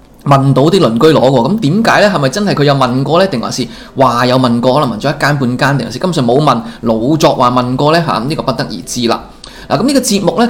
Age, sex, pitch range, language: 20-39, male, 120-180 Hz, Chinese